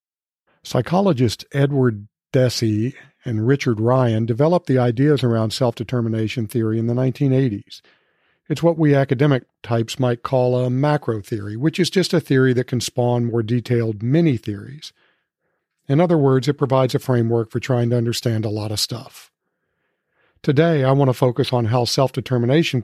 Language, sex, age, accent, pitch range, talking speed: English, male, 50-69, American, 120-145 Hz, 155 wpm